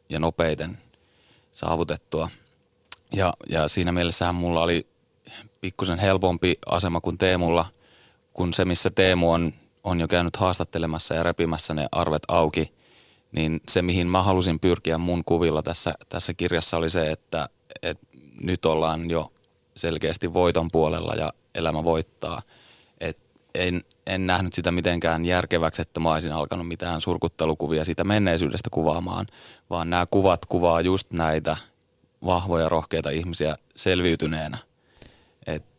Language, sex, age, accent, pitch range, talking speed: Finnish, male, 20-39, native, 80-90 Hz, 130 wpm